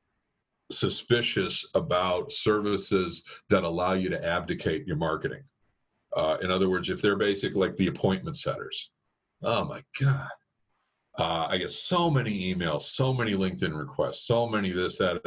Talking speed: 150 wpm